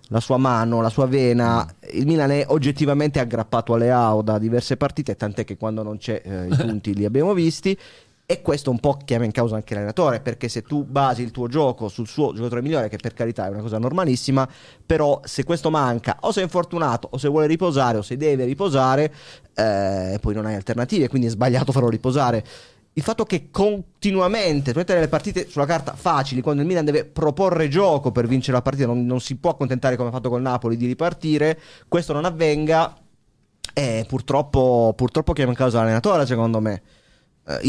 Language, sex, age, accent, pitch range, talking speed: Italian, male, 30-49, native, 120-150 Hz, 200 wpm